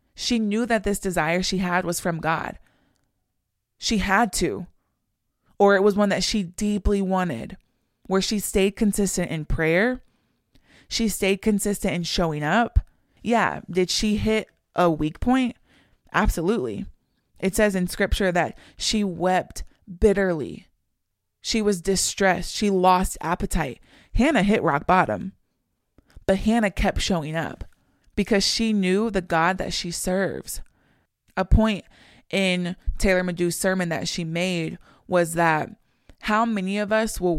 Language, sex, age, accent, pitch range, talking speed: English, female, 20-39, American, 175-210 Hz, 140 wpm